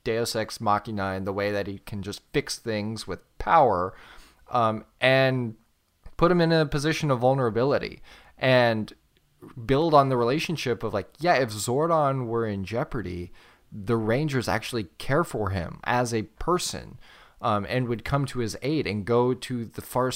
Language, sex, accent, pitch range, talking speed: English, male, American, 110-140 Hz, 170 wpm